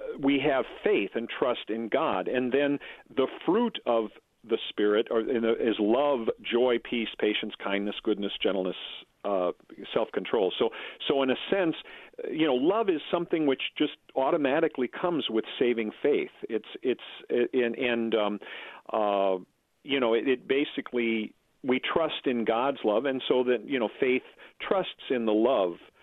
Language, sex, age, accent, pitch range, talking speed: English, male, 50-69, American, 115-140 Hz, 165 wpm